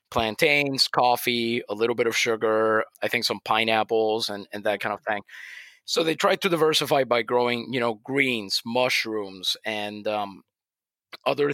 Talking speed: 160 wpm